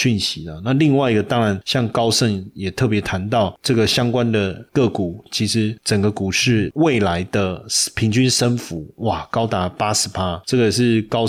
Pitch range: 100-125 Hz